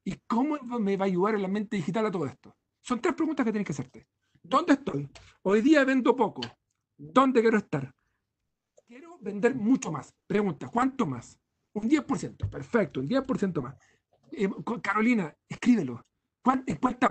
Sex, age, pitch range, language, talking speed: male, 50-69, 195-260 Hz, Spanish, 160 wpm